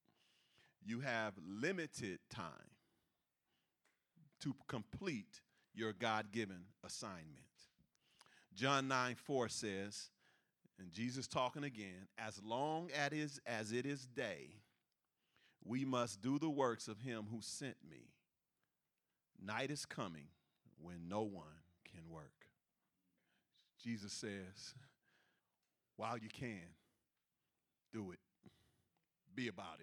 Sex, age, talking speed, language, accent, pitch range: male, 40-59, 100 wpm, English, American, 110-145 Hz